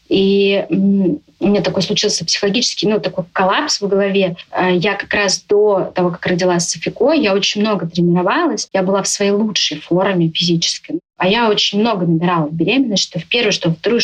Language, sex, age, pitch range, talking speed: Russian, female, 20-39, 180-220 Hz, 180 wpm